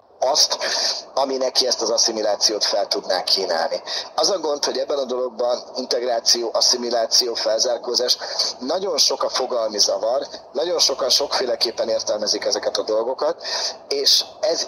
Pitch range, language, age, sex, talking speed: 120-150 Hz, Hungarian, 30-49, male, 135 wpm